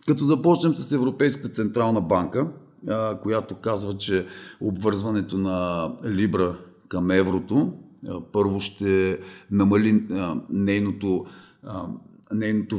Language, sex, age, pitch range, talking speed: Bulgarian, male, 40-59, 100-145 Hz, 90 wpm